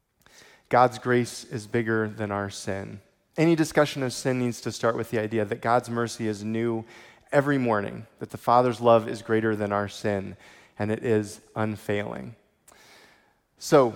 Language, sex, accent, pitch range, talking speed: English, male, American, 115-135 Hz, 165 wpm